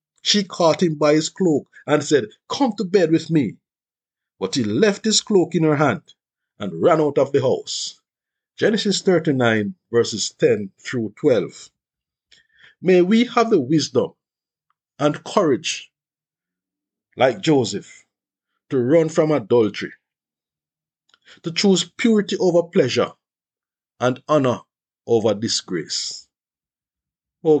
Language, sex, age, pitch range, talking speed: English, male, 50-69, 140-190 Hz, 120 wpm